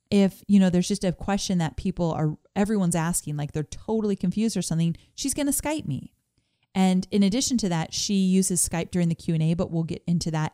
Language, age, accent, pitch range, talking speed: English, 30-49, American, 165-220 Hz, 220 wpm